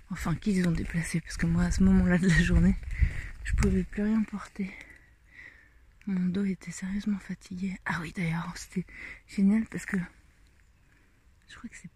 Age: 30-49